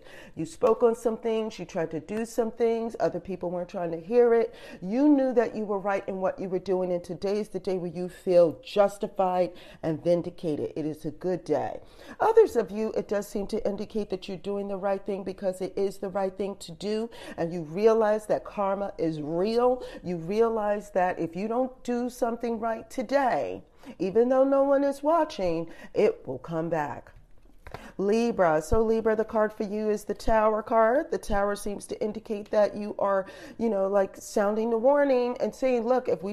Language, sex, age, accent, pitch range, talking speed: English, female, 40-59, American, 185-230 Hz, 205 wpm